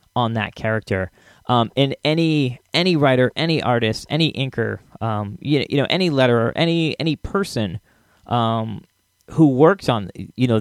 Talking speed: 145 wpm